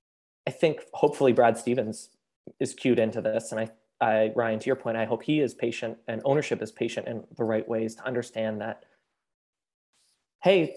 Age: 20-39